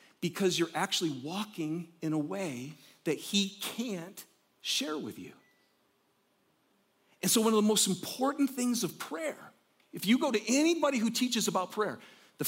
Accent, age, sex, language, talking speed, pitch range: American, 40-59, male, English, 160 wpm, 150-210 Hz